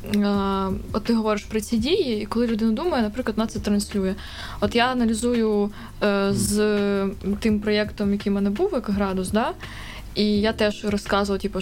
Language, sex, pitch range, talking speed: Ukrainian, female, 195-220 Hz, 150 wpm